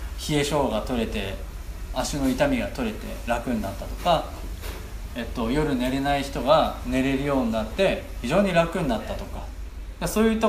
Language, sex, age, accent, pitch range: Japanese, male, 20-39, native, 115-190 Hz